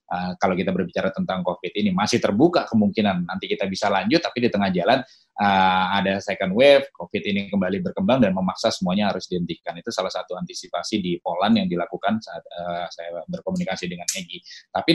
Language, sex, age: Indonesian, male, 20-39